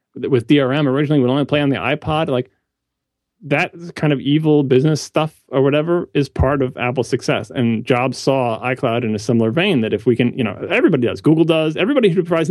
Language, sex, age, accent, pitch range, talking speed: English, male, 30-49, American, 115-160 Hz, 210 wpm